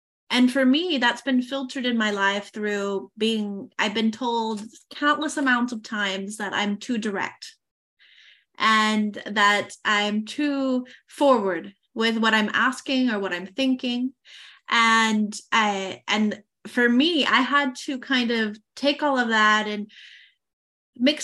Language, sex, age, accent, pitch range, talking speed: English, female, 20-39, American, 215-265 Hz, 140 wpm